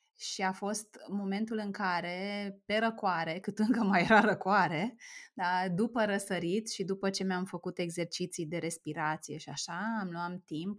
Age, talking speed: 20-39, 160 wpm